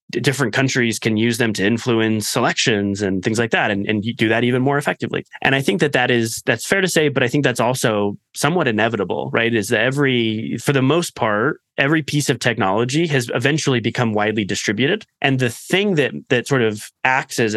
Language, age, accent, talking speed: English, 20-39, American, 215 wpm